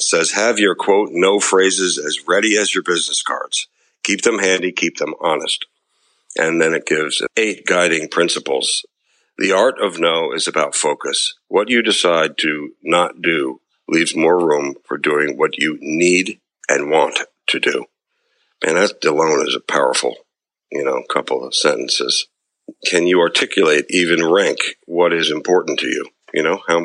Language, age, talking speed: English, 60-79, 165 wpm